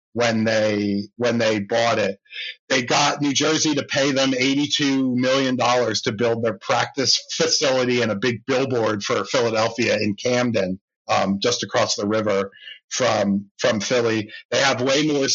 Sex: male